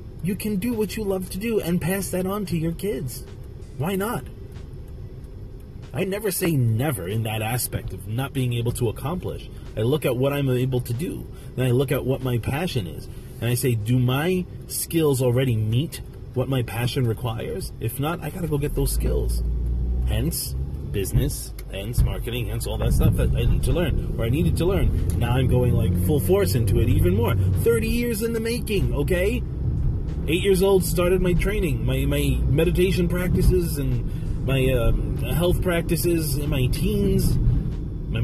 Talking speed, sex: 190 wpm, male